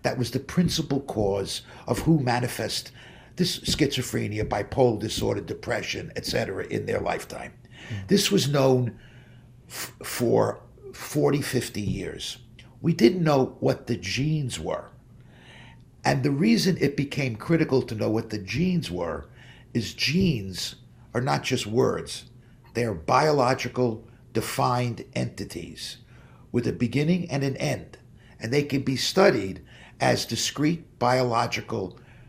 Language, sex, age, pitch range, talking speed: English, male, 50-69, 115-140 Hz, 125 wpm